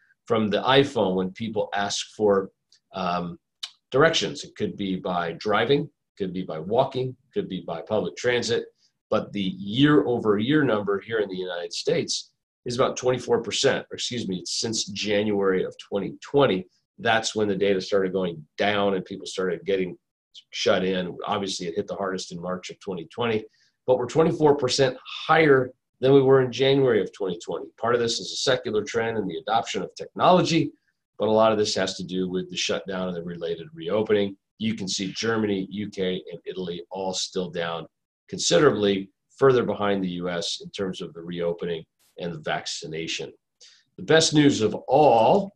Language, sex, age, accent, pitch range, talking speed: English, male, 40-59, American, 95-125 Hz, 175 wpm